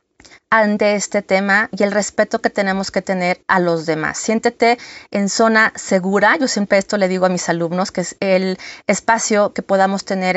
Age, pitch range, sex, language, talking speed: 30-49, 185-220 Hz, female, Spanish, 185 wpm